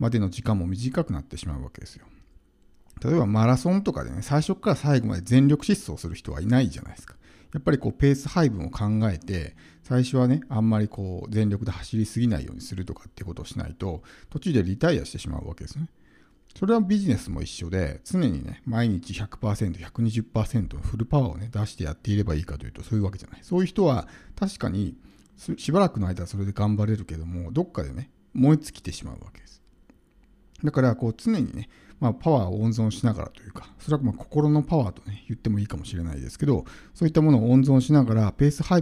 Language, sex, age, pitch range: Japanese, male, 50-69, 95-135 Hz